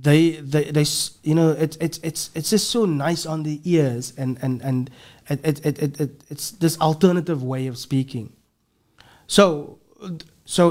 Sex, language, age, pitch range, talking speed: male, English, 30-49, 135-170 Hz, 170 wpm